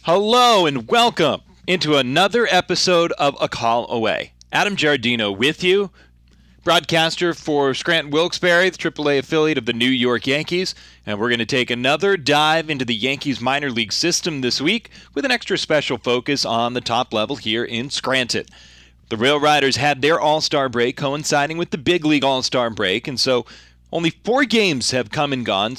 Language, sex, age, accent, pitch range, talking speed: English, male, 30-49, American, 125-165 Hz, 175 wpm